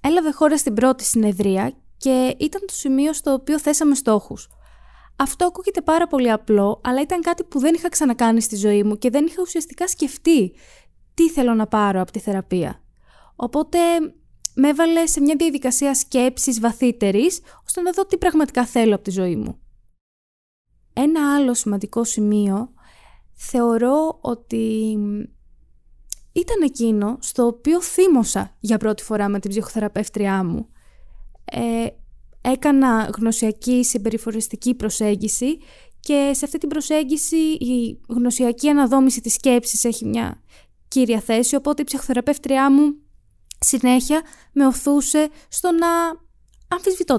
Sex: female